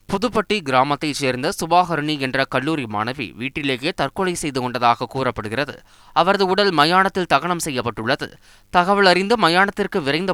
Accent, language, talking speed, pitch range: native, Tamil, 120 wpm, 140-180 Hz